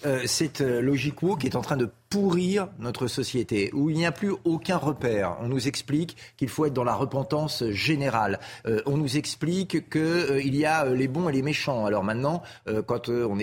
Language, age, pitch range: French, 40-59, 120-160 Hz